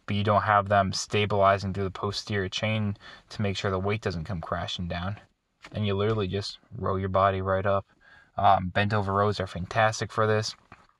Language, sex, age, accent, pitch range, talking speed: English, male, 20-39, American, 100-115 Hz, 195 wpm